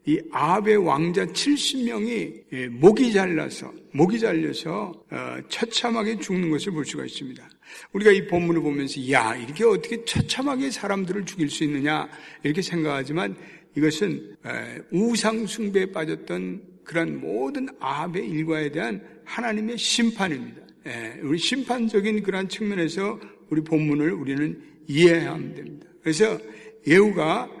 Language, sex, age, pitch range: Korean, male, 60-79, 155-210 Hz